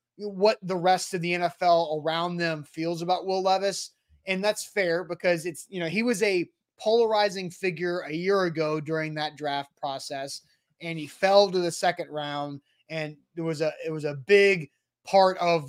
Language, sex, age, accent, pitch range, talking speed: English, male, 20-39, American, 165-190 Hz, 185 wpm